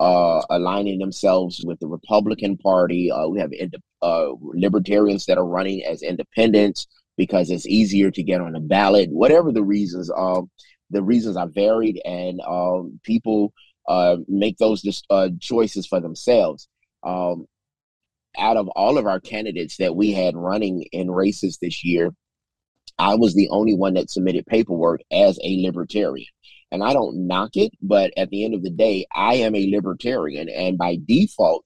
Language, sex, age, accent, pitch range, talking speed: English, male, 30-49, American, 90-105 Hz, 165 wpm